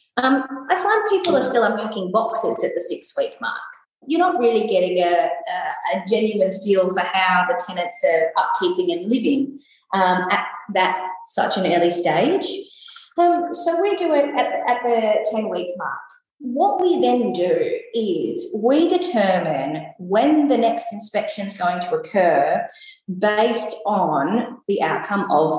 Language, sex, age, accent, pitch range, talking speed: English, female, 30-49, Australian, 185-270 Hz, 155 wpm